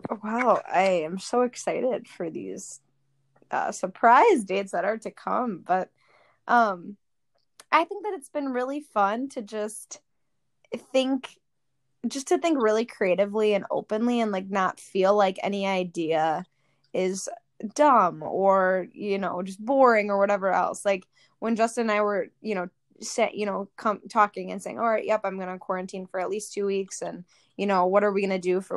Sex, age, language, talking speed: female, 10-29, English, 175 wpm